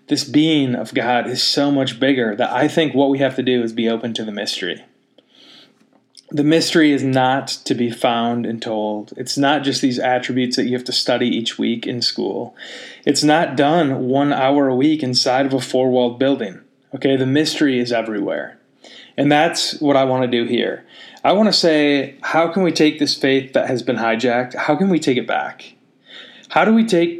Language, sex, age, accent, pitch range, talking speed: English, male, 20-39, American, 125-150 Hz, 210 wpm